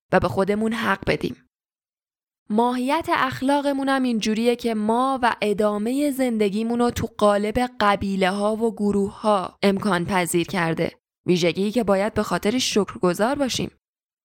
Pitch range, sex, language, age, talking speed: 190-230 Hz, female, Persian, 10-29, 135 wpm